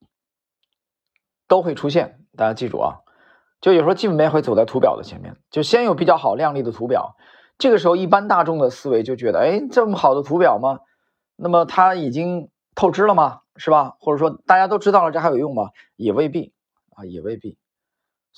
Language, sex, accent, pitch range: Chinese, male, native, 130-185 Hz